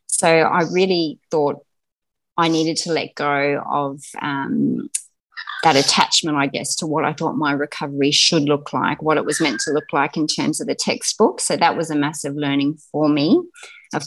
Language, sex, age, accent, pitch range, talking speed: English, female, 30-49, Australian, 145-170 Hz, 190 wpm